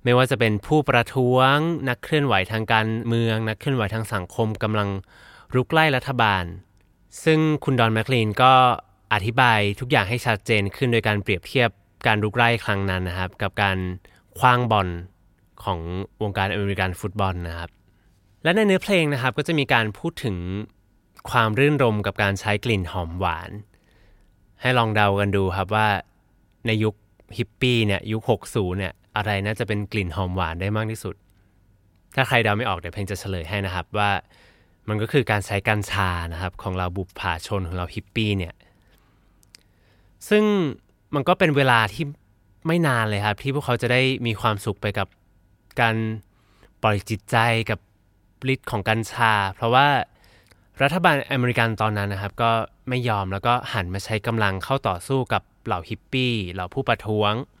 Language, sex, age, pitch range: English, male, 20-39, 95-120 Hz